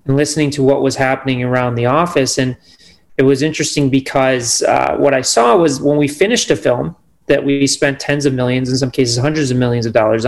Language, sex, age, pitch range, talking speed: English, male, 30-49, 130-155 Hz, 220 wpm